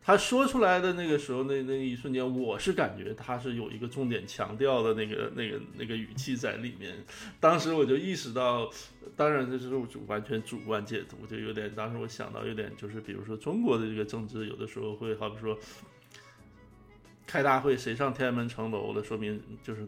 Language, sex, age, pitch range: Chinese, male, 20-39, 110-145 Hz